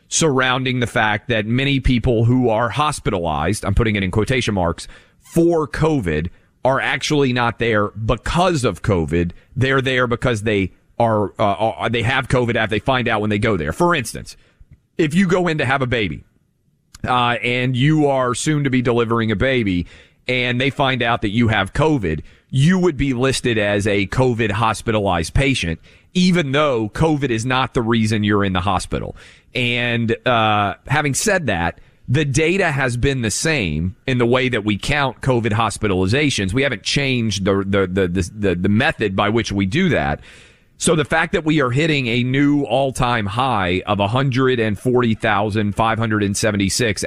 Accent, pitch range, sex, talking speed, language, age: American, 105-135 Hz, male, 175 wpm, English, 40-59